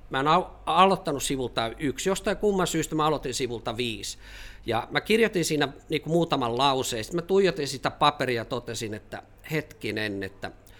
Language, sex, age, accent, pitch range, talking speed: Finnish, male, 50-69, native, 110-145 Hz, 160 wpm